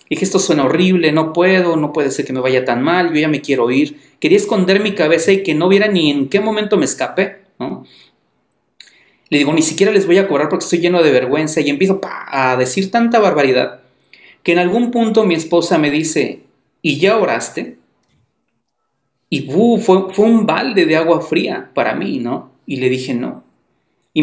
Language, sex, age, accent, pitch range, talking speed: Spanish, male, 40-59, Mexican, 145-190 Hz, 195 wpm